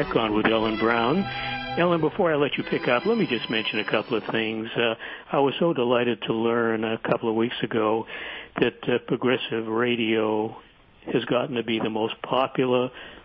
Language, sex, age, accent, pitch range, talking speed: English, male, 60-79, American, 115-130 Hz, 190 wpm